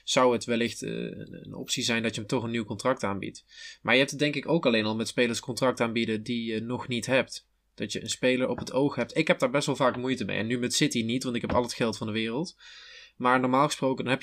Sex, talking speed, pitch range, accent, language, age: male, 285 wpm, 120-150 Hz, Dutch, Dutch, 20-39